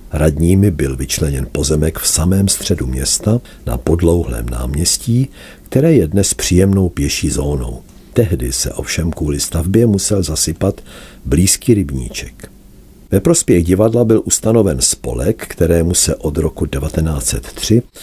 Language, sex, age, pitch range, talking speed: Czech, male, 50-69, 75-100 Hz, 125 wpm